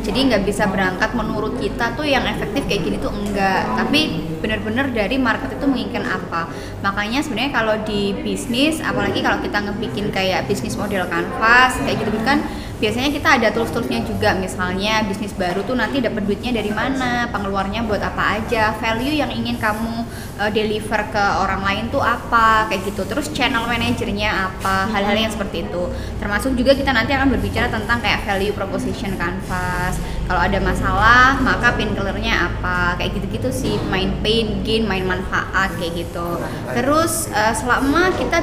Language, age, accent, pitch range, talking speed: Indonesian, 10-29, native, 200-245 Hz, 160 wpm